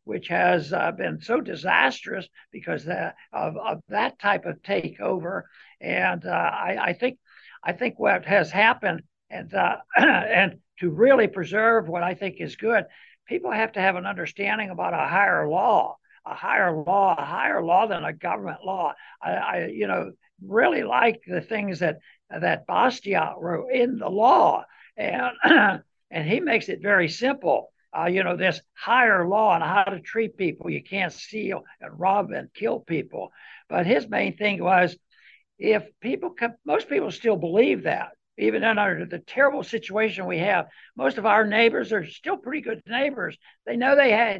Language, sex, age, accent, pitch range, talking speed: English, male, 60-79, American, 190-240 Hz, 175 wpm